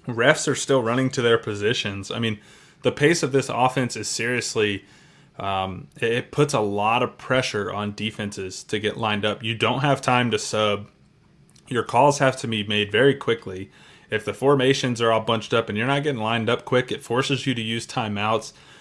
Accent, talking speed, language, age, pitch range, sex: American, 200 wpm, English, 20-39, 105-135 Hz, male